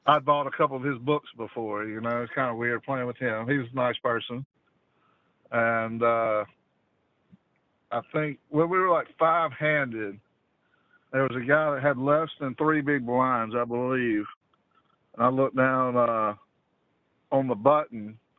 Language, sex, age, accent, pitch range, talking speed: English, male, 50-69, American, 120-145 Hz, 170 wpm